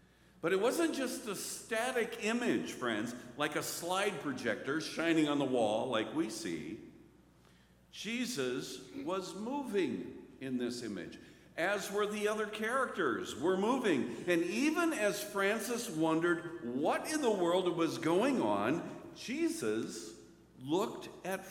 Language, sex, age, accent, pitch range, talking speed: English, male, 60-79, American, 140-205 Hz, 130 wpm